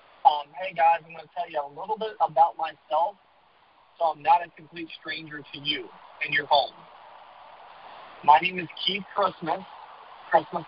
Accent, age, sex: American, 40-59, male